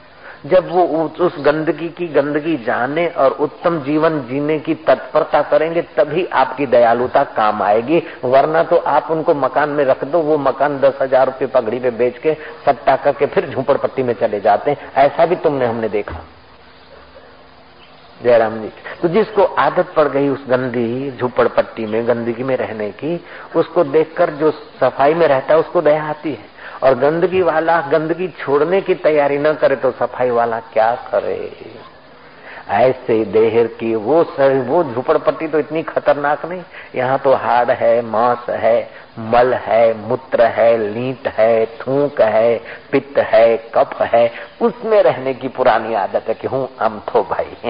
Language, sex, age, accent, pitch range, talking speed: Hindi, male, 50-69, native, 125-160 Hz, 160 wpm